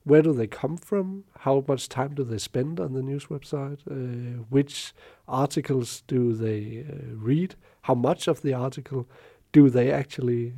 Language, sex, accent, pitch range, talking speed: Danish, male, native, 120-150 Hz, 170 wpm